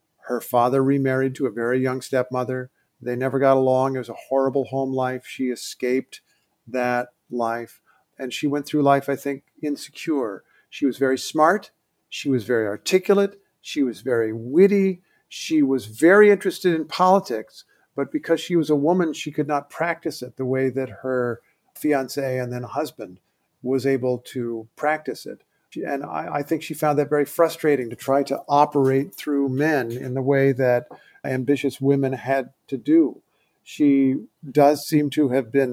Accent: American